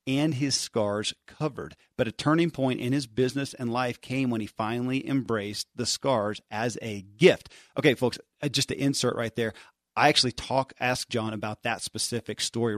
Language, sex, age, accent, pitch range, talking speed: English, male, 40-59, American, 110-135 Hz, 190 wpm